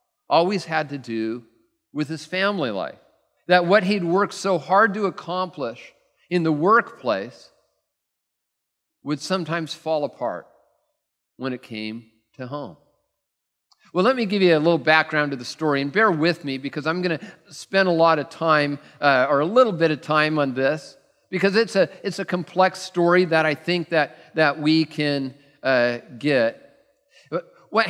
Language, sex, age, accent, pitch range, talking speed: English, male, 50-69, American, 150-185 Hz, 165 wpm